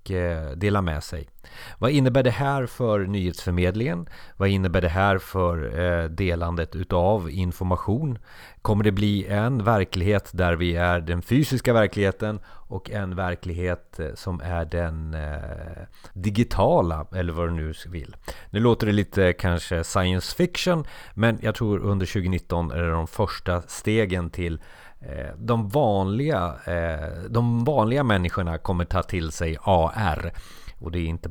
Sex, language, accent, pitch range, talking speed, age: male, Swedish, native, 85-105 Hz, 135 wpm, 30-49